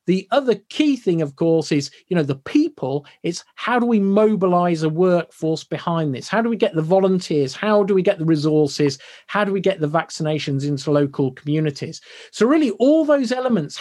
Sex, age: male, 40-59